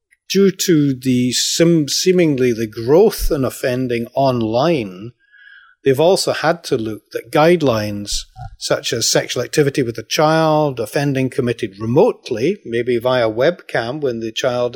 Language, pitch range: English, 110-140 Hz